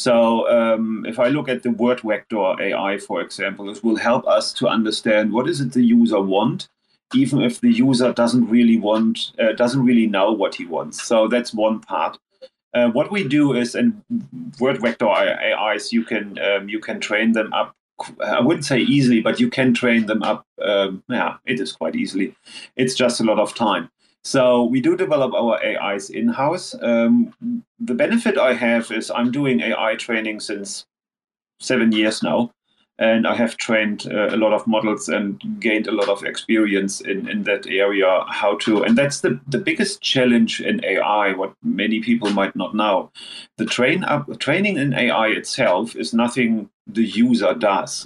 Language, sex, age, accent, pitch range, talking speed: English, male, 30-49, German, 110-130 Hz, 185 wpm